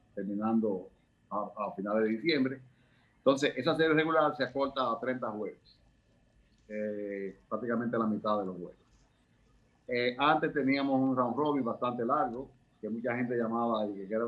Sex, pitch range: male, 110-135 Hz